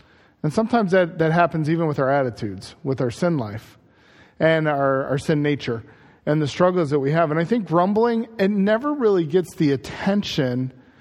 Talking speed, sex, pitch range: 185 wpm, male, 150-210 Hz